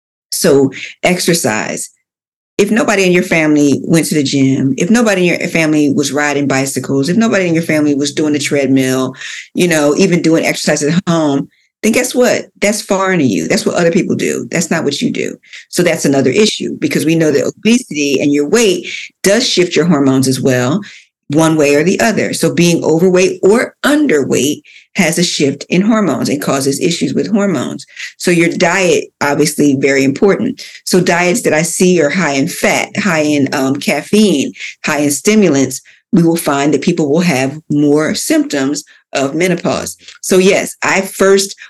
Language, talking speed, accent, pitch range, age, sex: English, 185 wpm, American, 145-195 Hz, 50-69, female